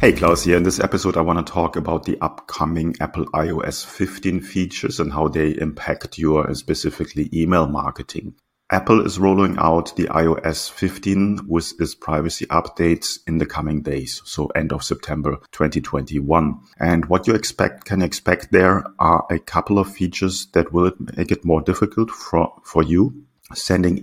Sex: male